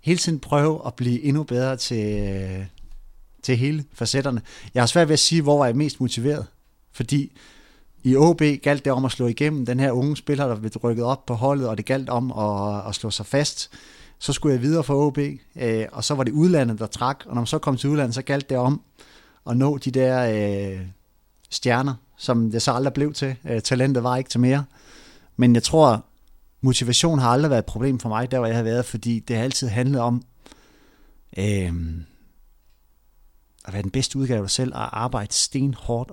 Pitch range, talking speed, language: 115-145 Hz, 210 wpm, Danish